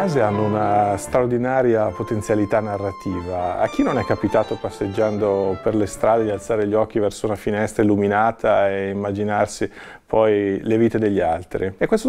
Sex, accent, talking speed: male, native, 165 wpm